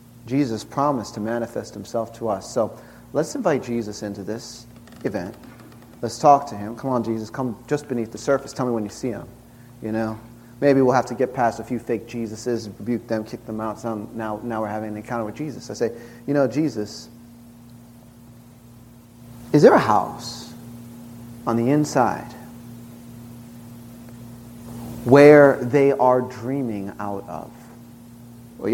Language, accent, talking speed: English, American, 160 wpm